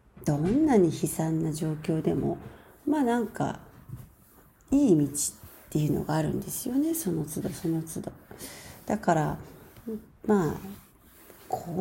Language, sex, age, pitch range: Japanese, female, 40-59, 160-225 Hz